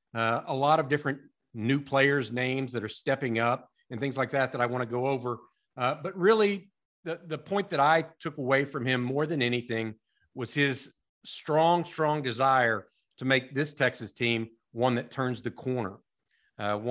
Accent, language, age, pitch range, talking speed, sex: American, English, 50-69, 125-165 Hz, 190 wpm, male